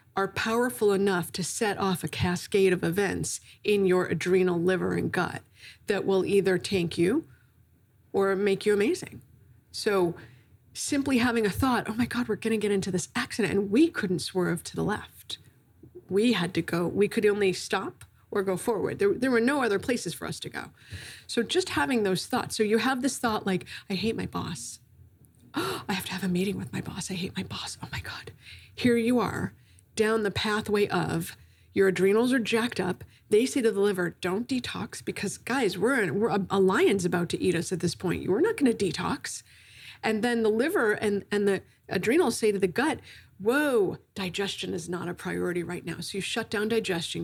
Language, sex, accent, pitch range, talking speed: English, female, American, 175-220 Hz, 205 wpm